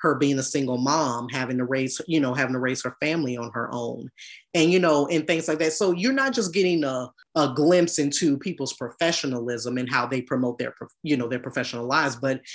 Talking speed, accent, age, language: 225 wpm, American, 20-39, English